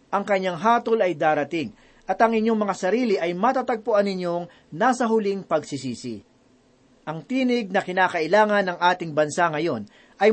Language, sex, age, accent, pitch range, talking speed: Filipino, male, 40-59, native, 170-230 Hz, 145 wpm